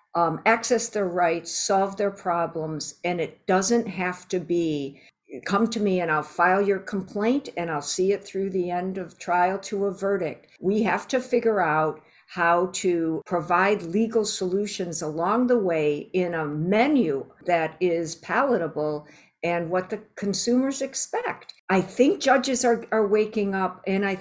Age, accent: 60-79, American